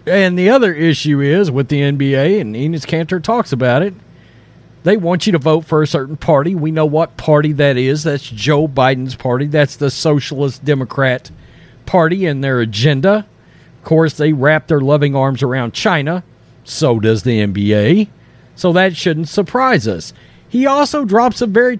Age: 40-59